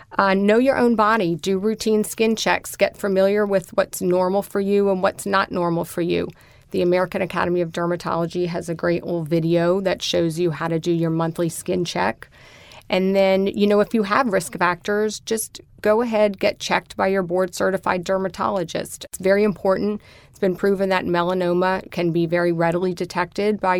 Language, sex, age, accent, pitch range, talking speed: English, female, 30-49, American, 175-200 Hz, 185 wpm